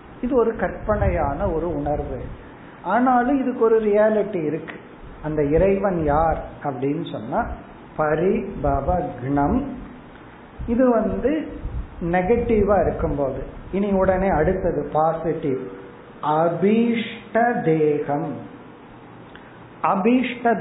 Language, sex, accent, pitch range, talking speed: Tamil, male, native, 155-205 Hz, 80 wpm